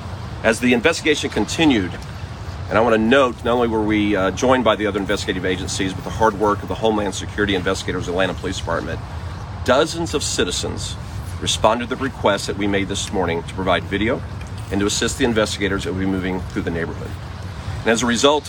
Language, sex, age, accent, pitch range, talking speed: English, male, 40-59, American, 95-115 Hz, 210 wpm